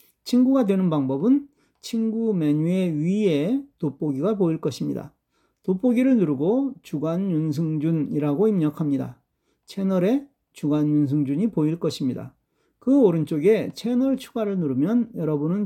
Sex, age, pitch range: male, 40-59, 155-210 Hz